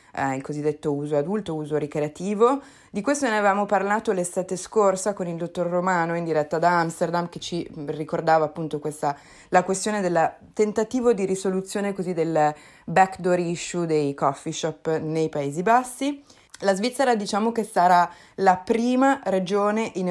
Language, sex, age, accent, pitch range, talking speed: Italian, female, 20-39, native, 160-200 Hz, 155 wpm